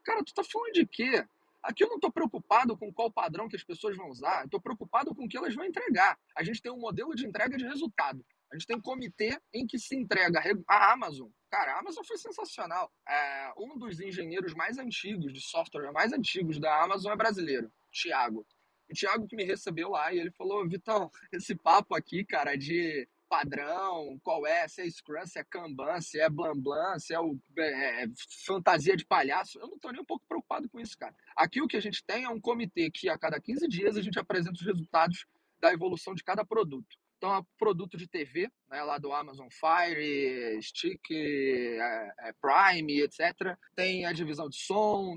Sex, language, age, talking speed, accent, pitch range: male, Portuguese, 20-39, 210 wpm, Brazilian, 165-240 Hz